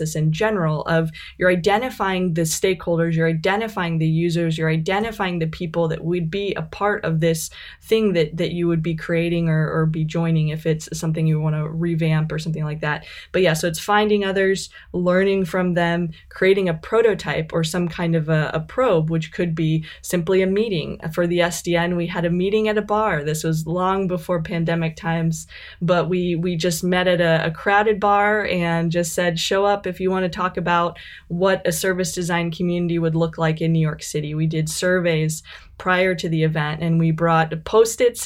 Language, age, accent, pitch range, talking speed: English, 20-39, American, 165-185 Hz, 200 wpm